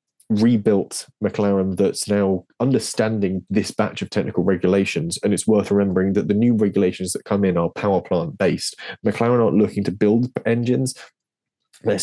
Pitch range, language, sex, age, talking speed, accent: 95-110 Hz, English, male, 20-39, 155 wpm, British